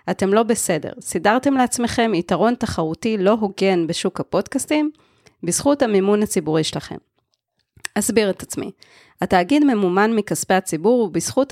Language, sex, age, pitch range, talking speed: Hebrew, female, 20-39, 175-225 Hz, 120 wpm